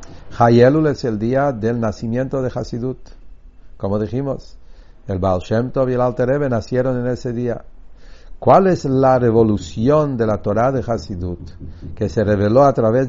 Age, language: 60-79, English